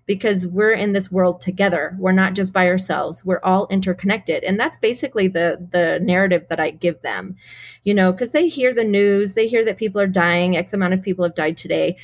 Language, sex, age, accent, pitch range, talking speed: English, female, 30-49, American, 180-230 Hz, 220 wpm